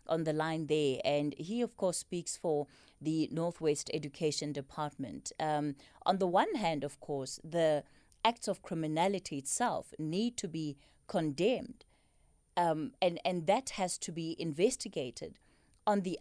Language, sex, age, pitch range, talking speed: English, female, 30-49, 155-205 Hz, 150 wpm